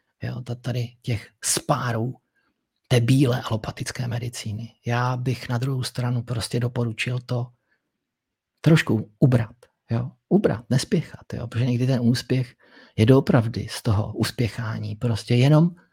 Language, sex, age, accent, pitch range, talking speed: Czech, male, 50-69, native, 115-130 Hz, 120 wpm